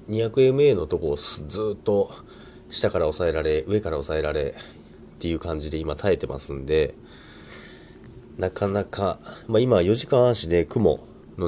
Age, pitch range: 30-49, 80-120 Hz